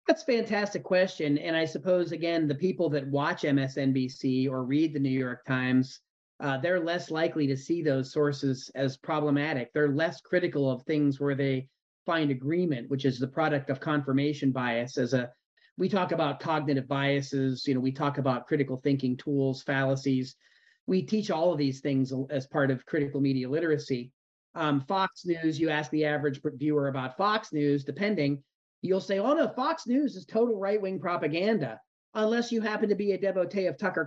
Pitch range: 140-185 Hz